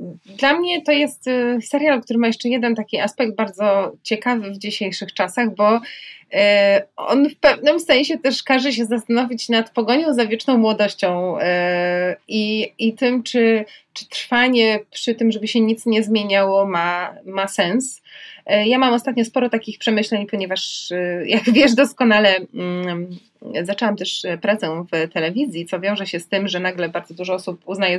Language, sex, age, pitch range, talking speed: Polish, female, 20-39, 195-255 Hz, 155 wpm